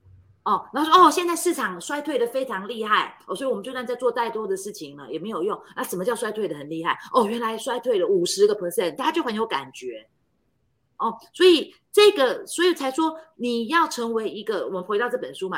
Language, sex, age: Chinese, female, 30-49